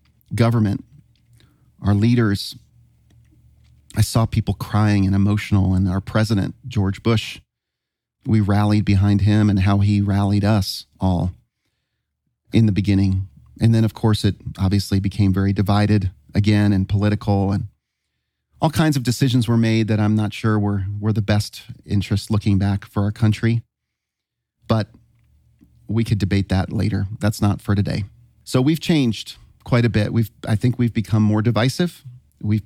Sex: male